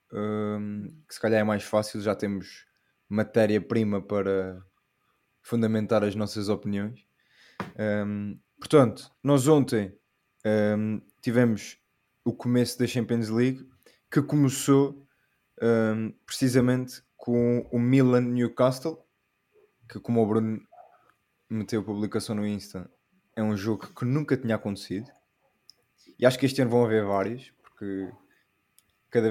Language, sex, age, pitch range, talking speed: Portuguese, male, 20-39, 105-125 Hz, 115 wpm